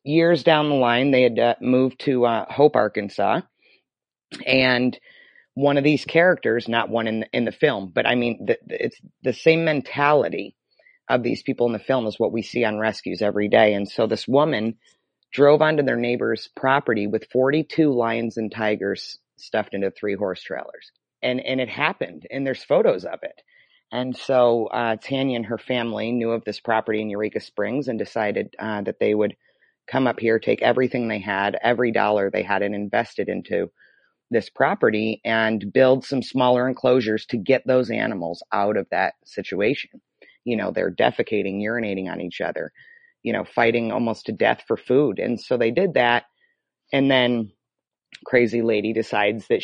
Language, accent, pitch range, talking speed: English, American, 110-135 Hz, 180 wpm